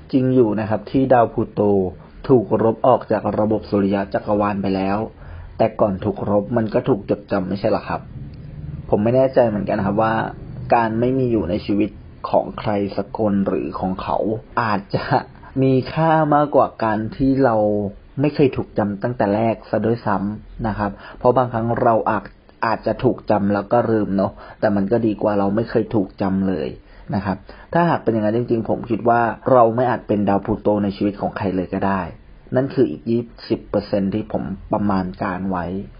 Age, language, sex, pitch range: 30-49, Thai, male, 100-125 Hz